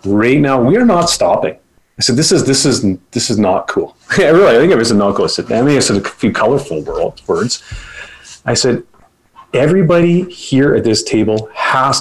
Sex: male